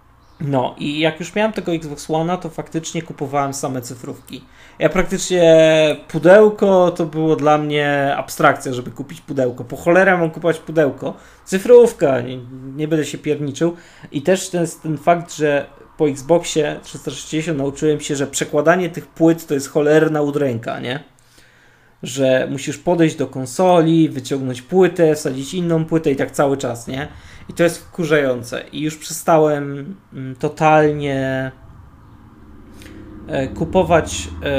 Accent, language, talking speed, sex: native, Polish, 135 wpm, male